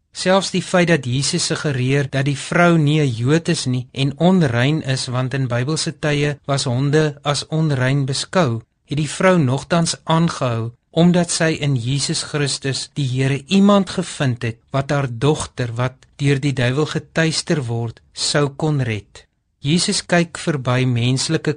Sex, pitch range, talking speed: male, 130-165 Hz, 160 wpm